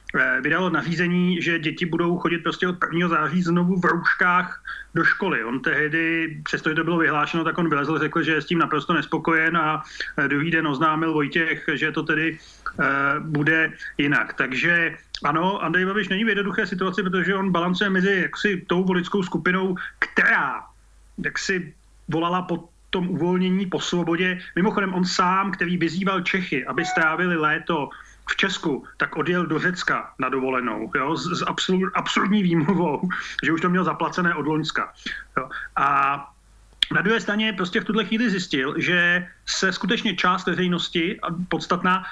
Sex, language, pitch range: male, Slovak, 160-190 Hz